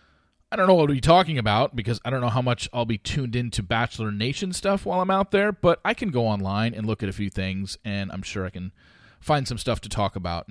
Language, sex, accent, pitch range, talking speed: English, male, American, 100-160 Hz, 275 wpm